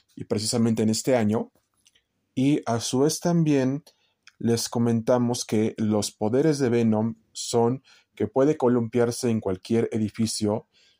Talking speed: 130 wpm